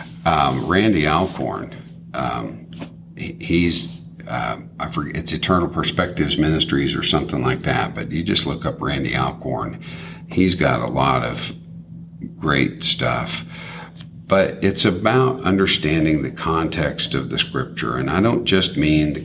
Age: 50-69